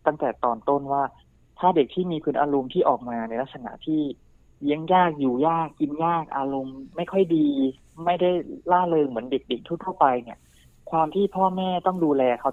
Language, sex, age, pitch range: Thai, male, 20-39, 125-155 Hz